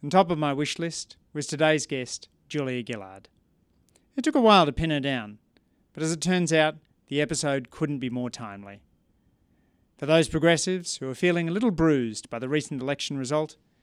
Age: 40-59